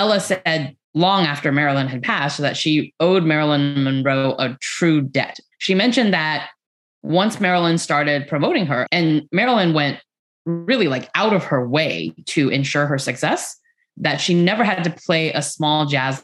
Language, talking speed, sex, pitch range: English, 165 wpm, female, 140-180 Hz